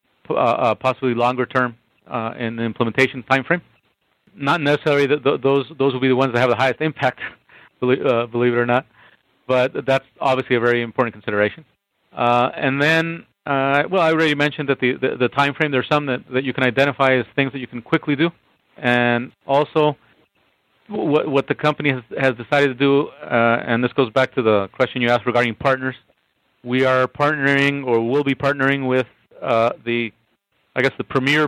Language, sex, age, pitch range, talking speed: English, male, 40-59, 115-140 Hz, 195 wpm